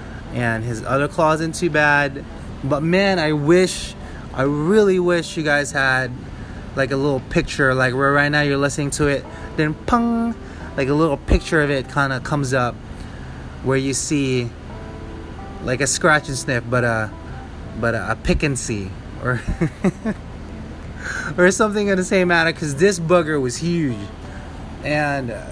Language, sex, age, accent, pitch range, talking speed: English, male, 20-39, American, 110-145 Hz, 165 wpm